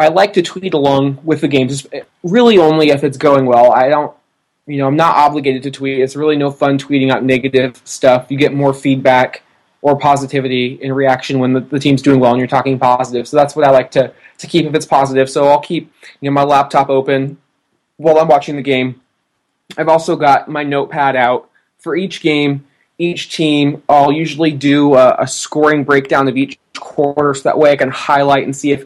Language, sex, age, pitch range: English, male, 20-39, 130-150 Hz